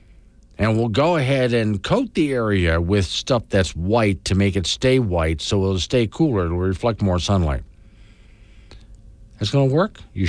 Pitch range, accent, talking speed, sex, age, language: 90-125 Hz, American, 175 wpm, male, 50-69, English